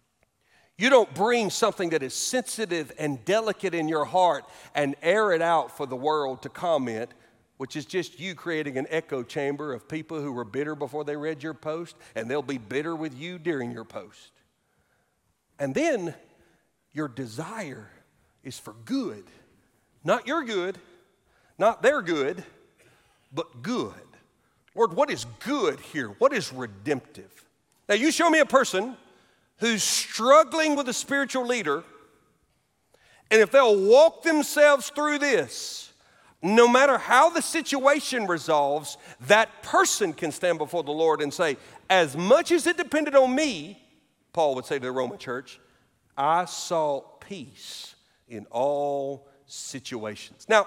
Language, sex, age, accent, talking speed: English, male, 50-69, American, 150 wpm